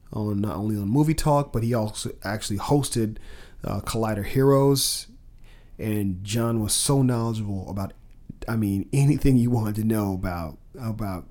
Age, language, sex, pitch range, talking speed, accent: 40-59, English, male, 105-125 Hz, 150 wpm, American